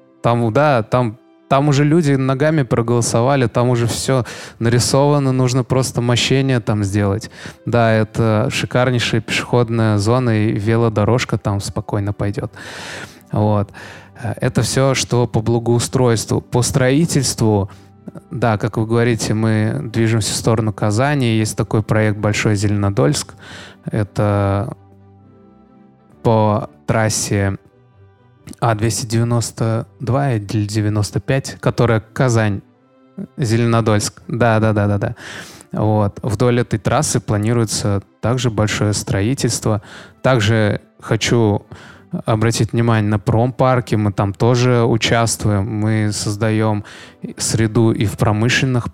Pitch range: 105-125 Hz